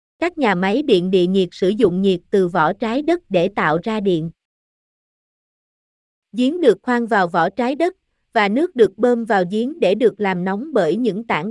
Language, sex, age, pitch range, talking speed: Vietnamese, female, 20-39, 190-250 Hz, 195 wpm